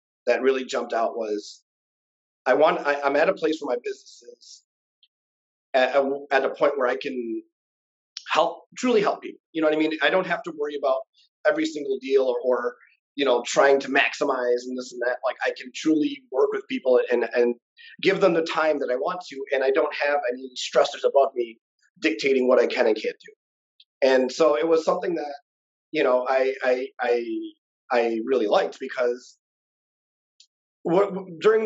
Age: 30-49